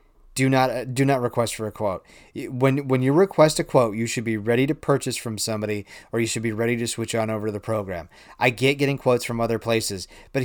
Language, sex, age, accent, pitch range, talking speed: English, male, 30-49, American, 115-135 Hz, 245 wpm